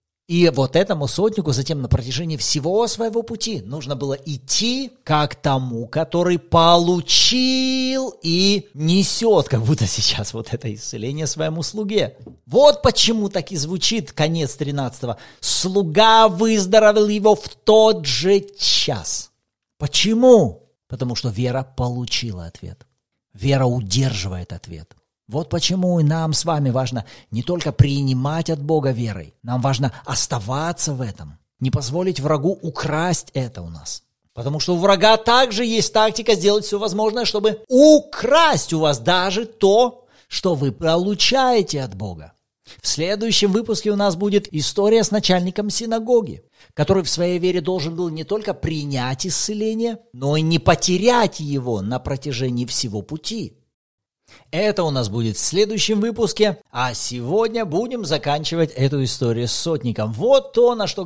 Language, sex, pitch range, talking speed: Russian, male, 130-210 Hz, 140 wpm